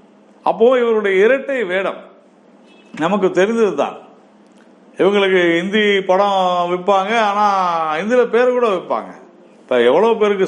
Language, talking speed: Tamil, 105 wpm